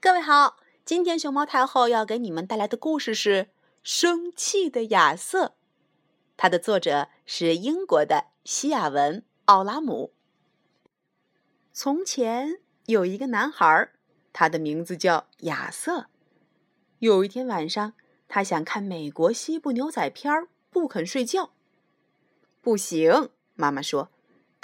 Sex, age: female, 30-49